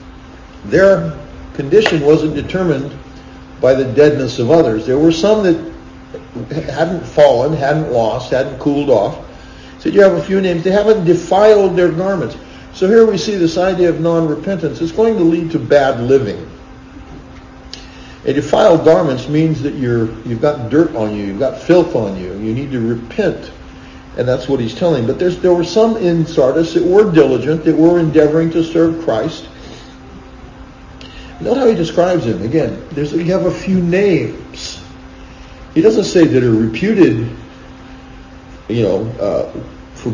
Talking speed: 160 wpm